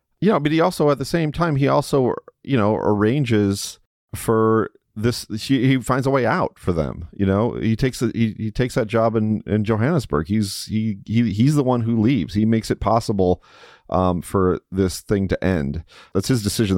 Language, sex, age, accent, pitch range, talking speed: English, male, 30-49, American, 90-115 Hz, 205 wpm